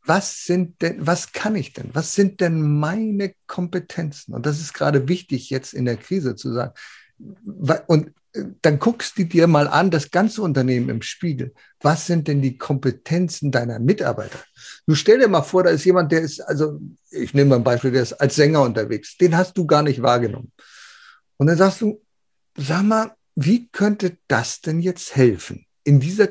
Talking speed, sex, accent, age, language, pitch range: 190 wpm, male, German, 50-69, German, 135-180 Hz